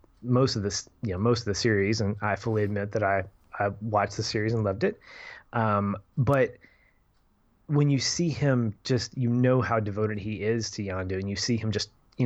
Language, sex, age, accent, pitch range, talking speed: English, male, 20-39, American, 100-120 Hz, 210 wpm